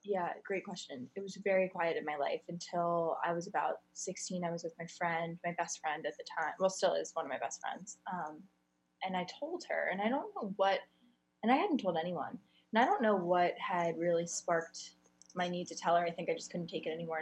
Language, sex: English, female